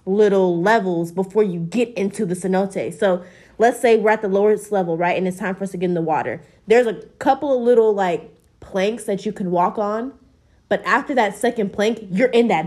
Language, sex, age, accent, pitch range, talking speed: English, female, 20-39, American, 185-240 Hz, 225 wpm